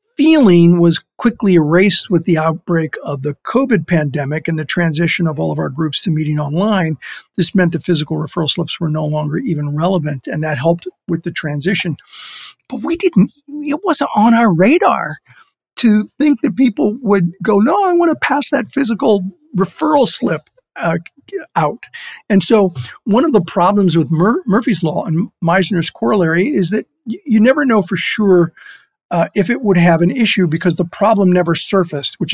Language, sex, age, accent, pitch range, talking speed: English, male, 50-69, American, 160-220 Hz, 180 wpm